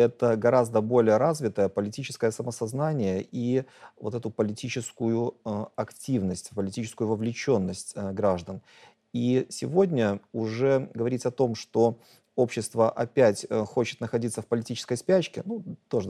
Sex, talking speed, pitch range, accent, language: male, 110 wpm, 110-140 Hz, native, Russian